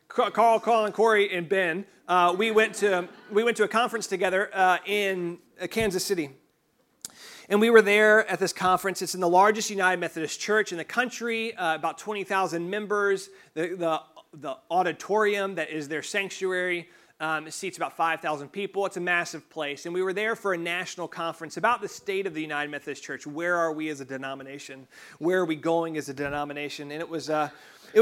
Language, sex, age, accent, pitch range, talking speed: English, male, 30-49, American, 165-205 Hz, 200 wpm